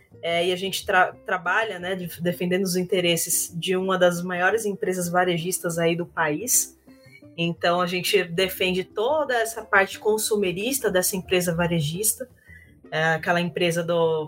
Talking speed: 145 wpm